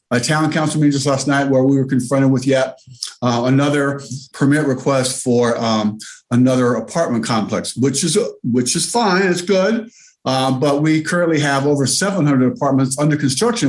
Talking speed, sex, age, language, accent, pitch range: 170 wpm, male, 50-69, English, American, 130-155 Hz